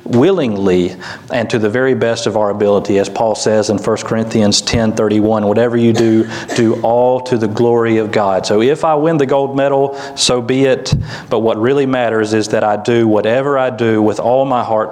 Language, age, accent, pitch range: English, 40-59, American, 105-125 Hz